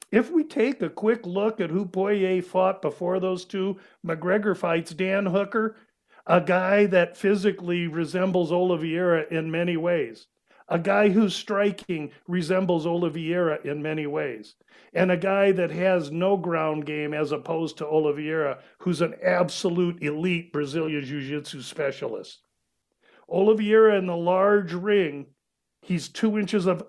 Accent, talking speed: American, 140 wpm